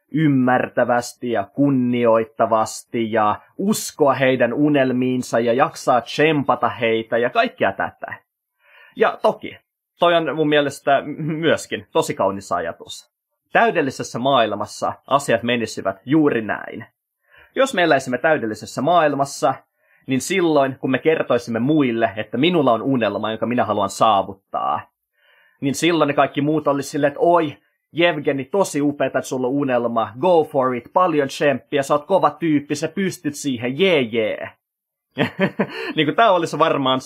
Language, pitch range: Finnish, 120-155 Hz